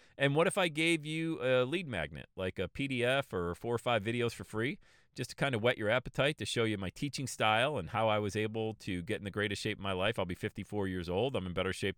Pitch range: 100-145 Hz